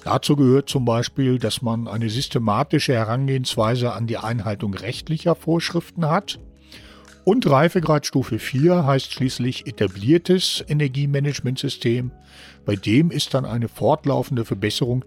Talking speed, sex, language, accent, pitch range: 115 wpm, male, German, German, 115-155 Hz